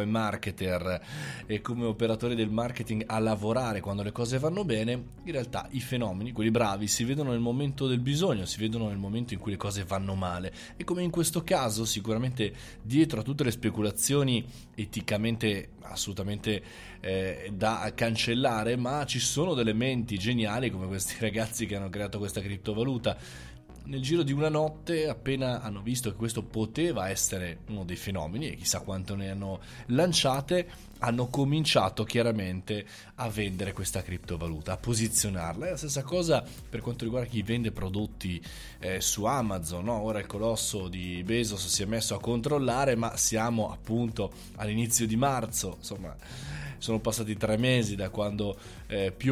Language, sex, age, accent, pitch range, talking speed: Italian, male, 20-39, native, 100-125 Hz, 160 wpm